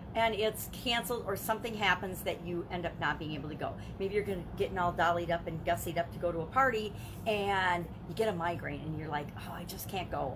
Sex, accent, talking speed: female, American, 250 wpm